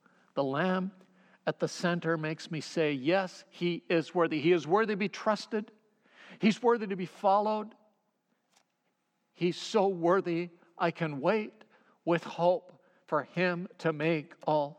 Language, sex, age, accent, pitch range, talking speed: English, male, 50-69, American, 160-200 Hz, 145 wpm